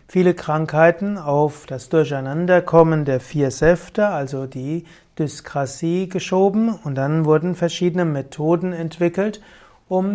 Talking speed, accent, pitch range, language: 110 wpm, German, 145-180 Hz, German